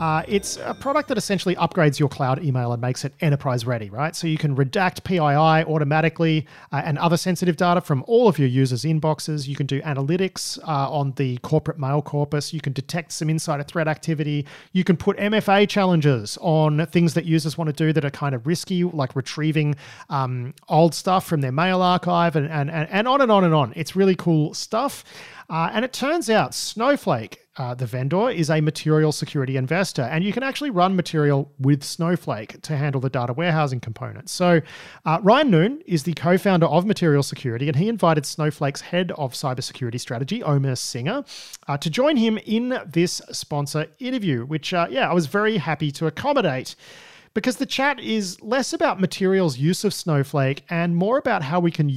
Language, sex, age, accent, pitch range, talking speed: English, male, 40-59, Australian, 145-185 Hz, 195 wpm